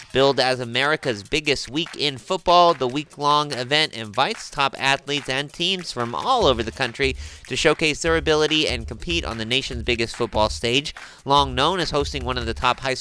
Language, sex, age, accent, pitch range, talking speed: English, male, 30-49, American, 105-140 Hz, 190 wpm